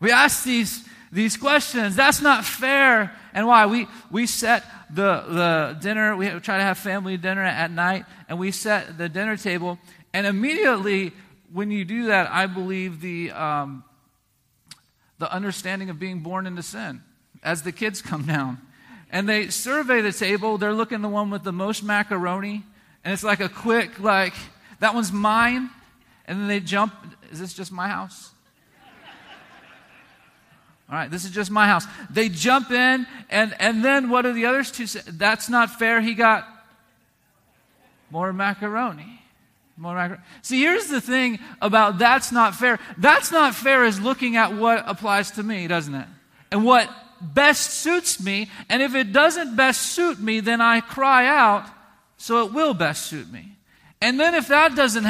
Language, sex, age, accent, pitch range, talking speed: English, male, 40-59, American, 185-235 Hz, 170 wpm